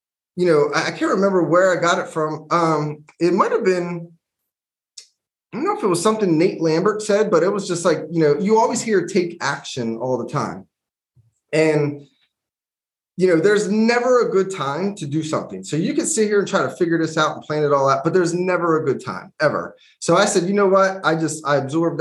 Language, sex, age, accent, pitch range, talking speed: English, male, 20-39, American, 145-180 Hz, 230 wpm